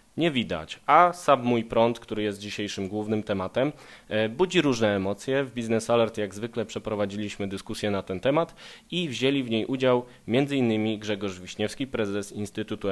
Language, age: Polish, 20-39